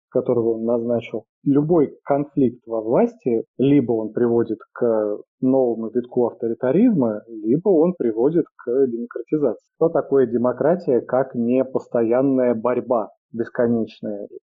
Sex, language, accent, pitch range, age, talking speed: male, Russian, native, 115-145 Hz, 20-39, 110 wpm